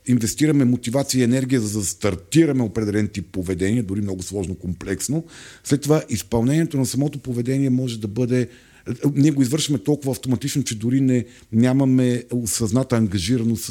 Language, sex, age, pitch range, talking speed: Bulgarian, male, 50-69, 105-130 Hz, 150 wpm